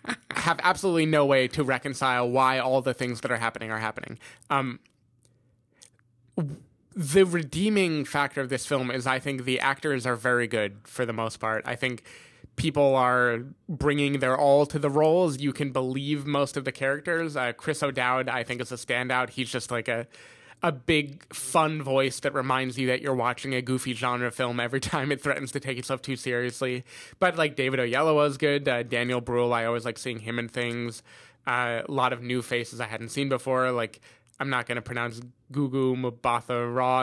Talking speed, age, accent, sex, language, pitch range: 195 wpm, 20-39, American, male, English, 120-140 Hz